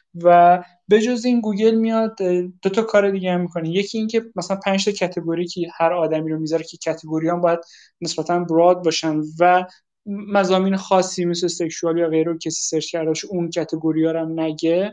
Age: 20-39